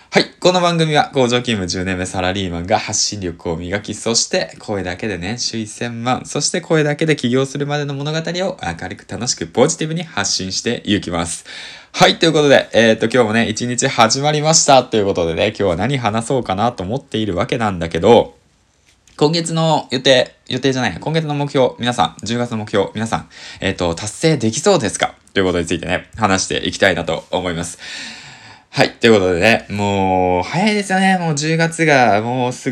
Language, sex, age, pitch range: Japanese, male, 20-39, 95-140 Hz